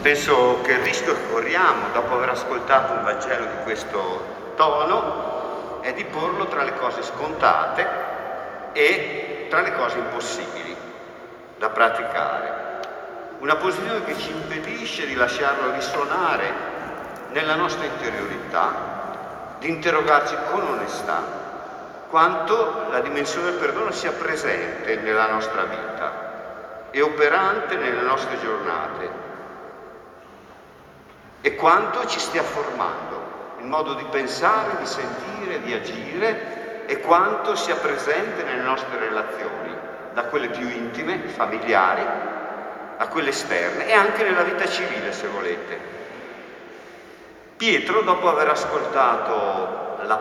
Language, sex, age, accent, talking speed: Italian, male, 50-69, native, 115 wpm